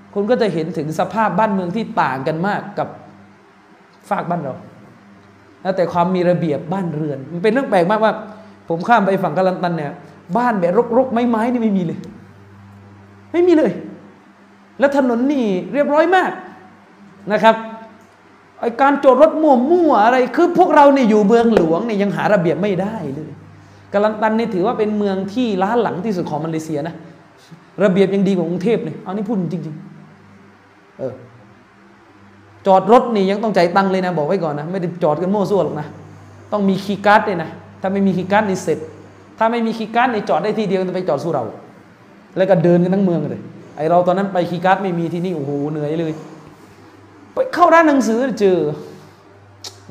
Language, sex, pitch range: Thai, male, 155-220 Hz